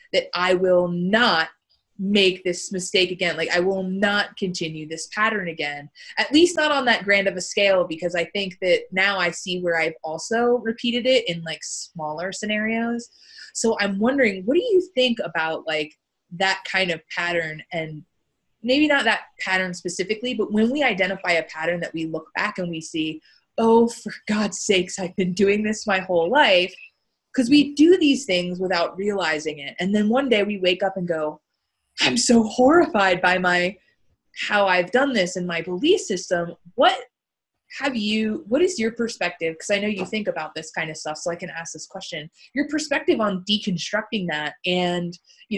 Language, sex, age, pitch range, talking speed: English, female, 20-39, 175-225 Hz, 190 wpm